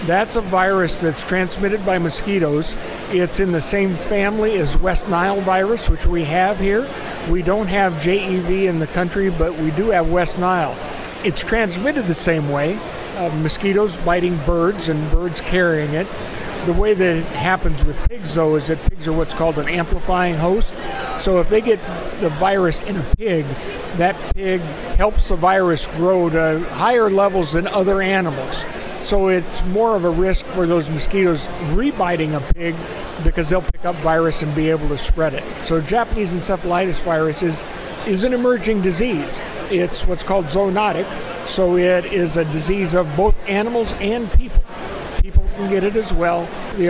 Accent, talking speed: American, 175 wpm